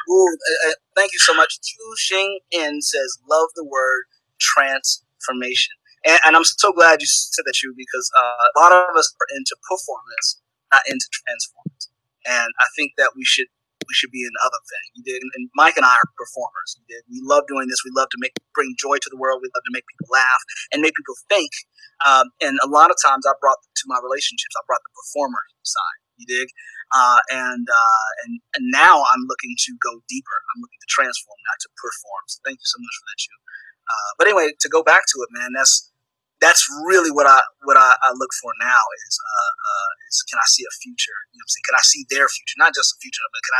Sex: male